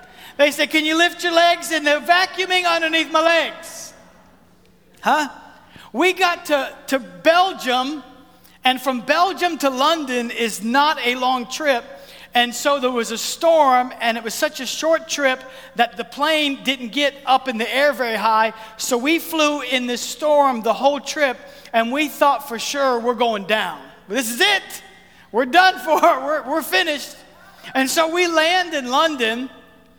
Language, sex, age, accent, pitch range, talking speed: English, male, 50-69, American, 230-300 Hz, 170 wpm